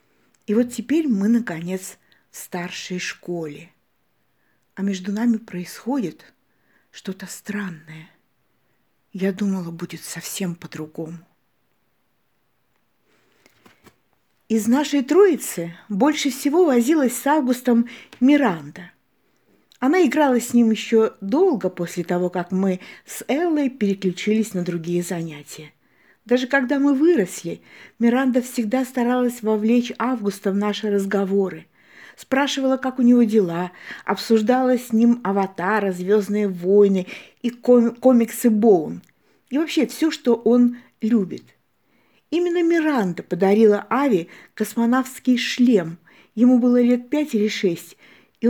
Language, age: Russian, 50-69